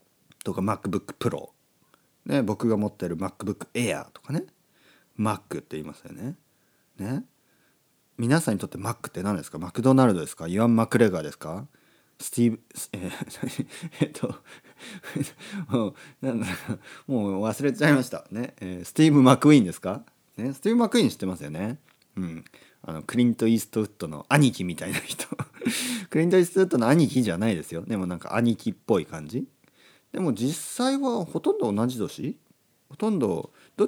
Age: 40-59